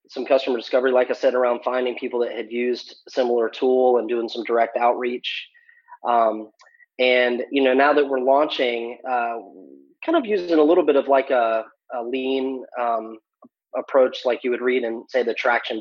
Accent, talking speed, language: American, 190 wpm, English